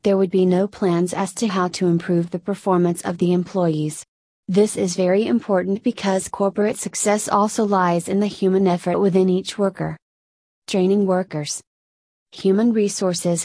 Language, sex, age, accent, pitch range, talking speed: English, female, 30-49, American, 175-195 Hz, 155 wpm